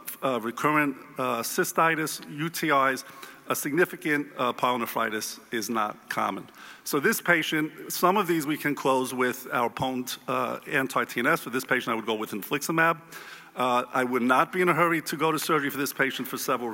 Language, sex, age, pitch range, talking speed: English, male, 50-69, 125-155 Hz, 185 wpm